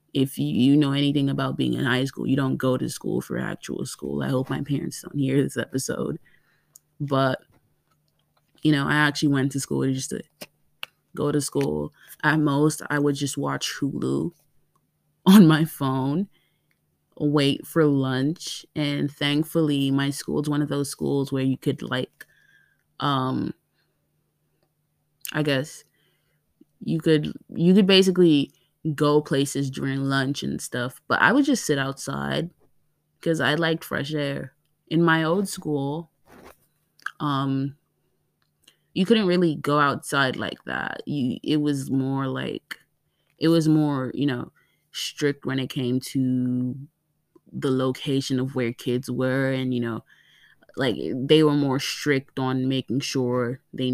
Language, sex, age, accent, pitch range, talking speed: English, female, 20-39, American, 130-150 Hz, 150 wpm